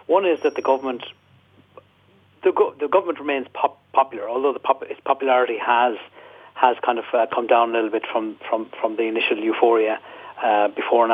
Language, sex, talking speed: English, male, 195 wpm